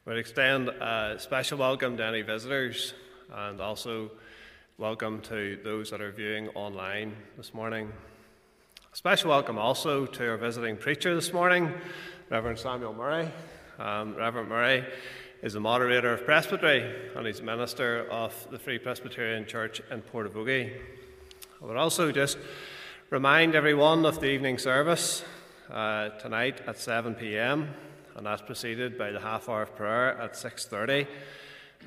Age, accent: 30-49, Irish